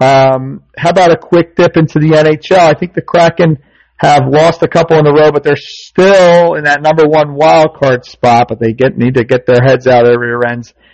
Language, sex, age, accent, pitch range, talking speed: English, male, 50-69, American, 110-140 Hz, 235 wpm